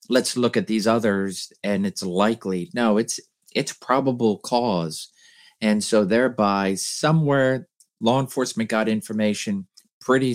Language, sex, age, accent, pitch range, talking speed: English, male, 50-69, American, 95-115 Hz, 130 wpm